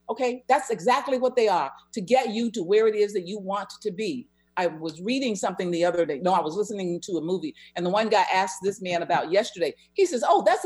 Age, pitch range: 50-69, 185-265 Hz